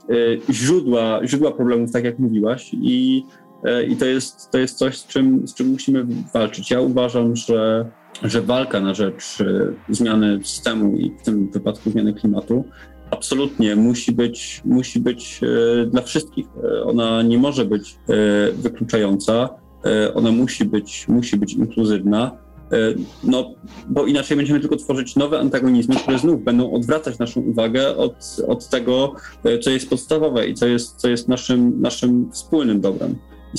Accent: native